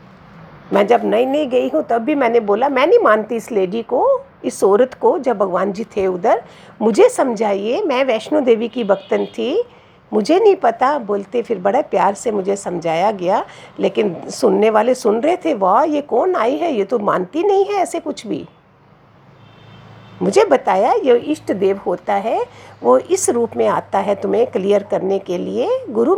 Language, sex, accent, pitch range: Hindi, female, native, 215-320 Hz